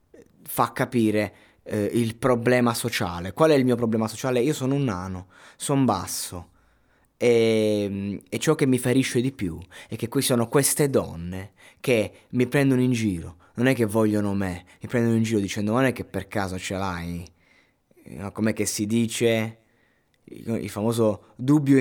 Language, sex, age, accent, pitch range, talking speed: Italian, male, 20-39, native, 100-125 Hz, 170 wpm